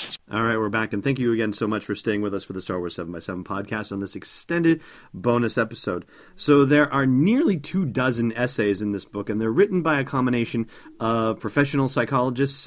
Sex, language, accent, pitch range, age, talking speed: male, English, American, 100-130 Hz, 40-59, 210 wpm